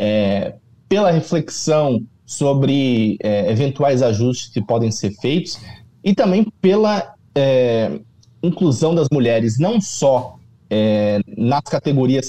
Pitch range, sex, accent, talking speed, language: 110-140 Hz, male, Brazilian, 110 wpm, Portuguese